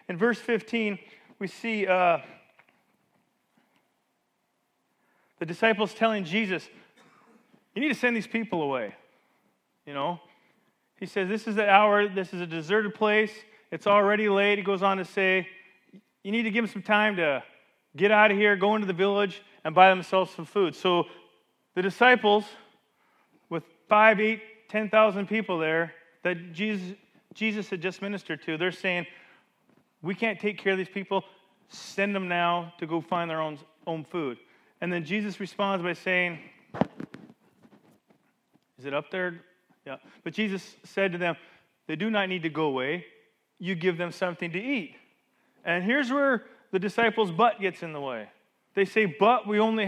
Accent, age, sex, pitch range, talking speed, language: American, 30-49, male, 175-215 Hz, 165 wpm, English